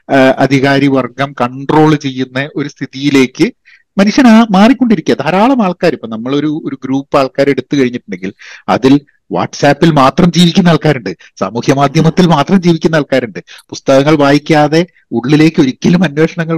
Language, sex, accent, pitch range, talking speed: Malayalam, male, native, 130-165 Hz, 115 wpm